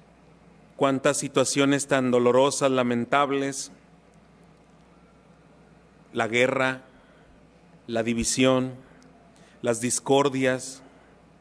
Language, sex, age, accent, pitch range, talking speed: Spanish, male, 40-59, Mexican, 125-140 Hz, 60 wpm